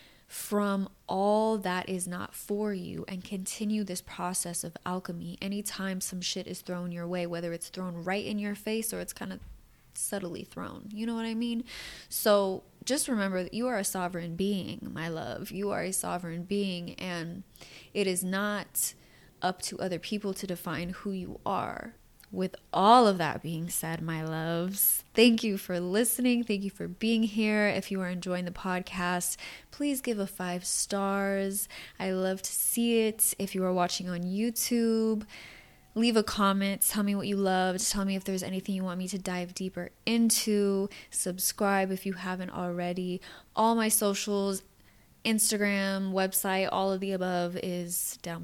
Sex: female